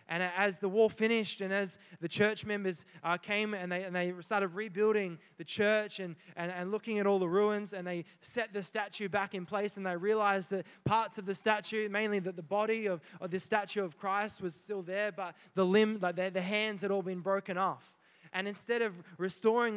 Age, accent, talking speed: 20-39, Australian, 220 wpm